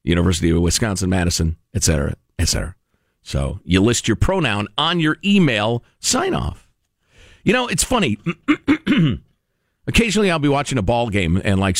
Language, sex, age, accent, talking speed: English, male, 50-69, American, 160 wpm